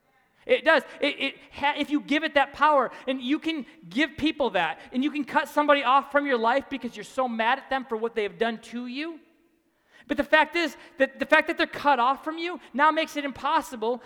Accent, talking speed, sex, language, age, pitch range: American, 225 wpm, male, English, 30-49, 230-295 Hz